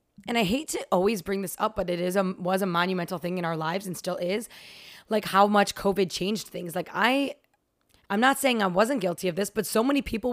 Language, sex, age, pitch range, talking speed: English, female, 20-39, 180-215 Hz, 245 wpm